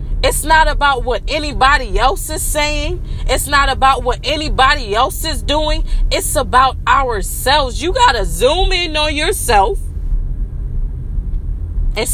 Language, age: English, 20-39